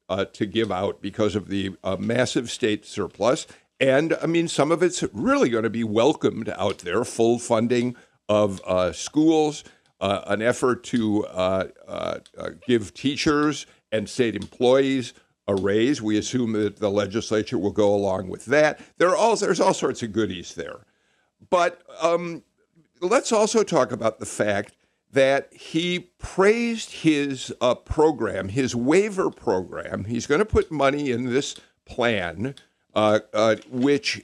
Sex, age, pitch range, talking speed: male, 50-69, 105-140 Hz, 155 wpm